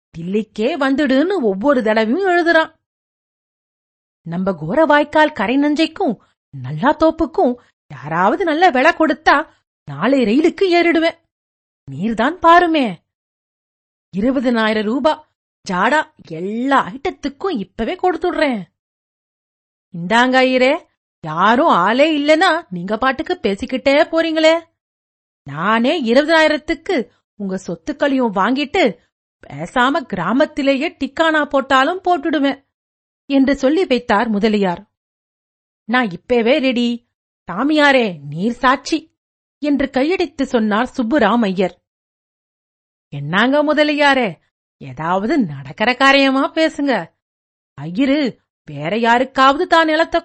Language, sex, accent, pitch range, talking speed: Tamil, female, native, 215-310 Hz, 65 wpm